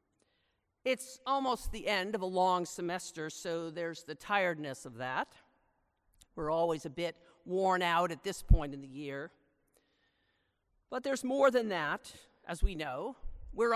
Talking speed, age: 155 wpm, 50-69